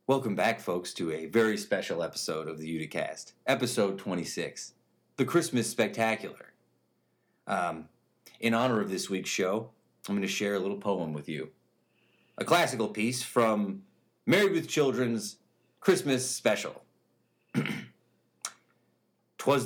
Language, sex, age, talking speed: English, male, 40-59, 130 wpm